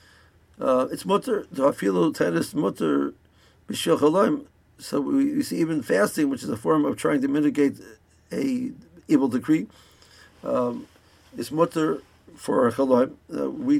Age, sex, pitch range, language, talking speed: 60-79, male, 105-150 Hz, English, 120 wpm